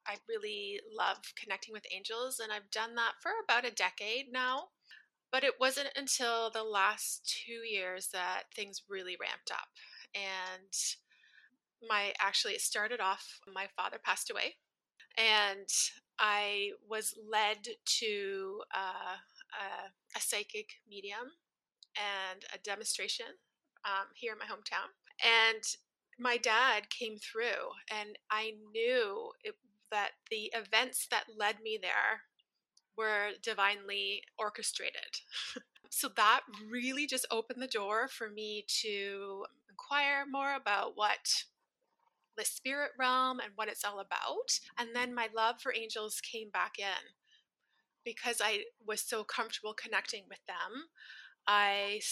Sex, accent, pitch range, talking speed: female, American, 205-260 Hz, 130 wpm